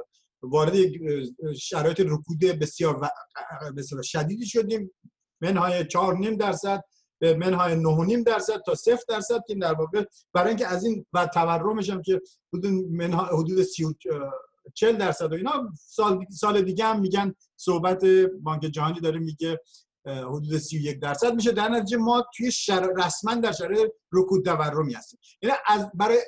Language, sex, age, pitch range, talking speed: Persian, male, 50-69, 155-205 Hz, 135 wpm